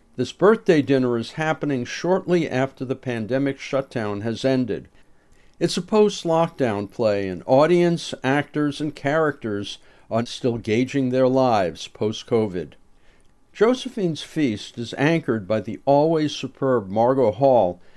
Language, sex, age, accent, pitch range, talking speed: English, male, 60-79, American, 125-160 Hz, 125 wpm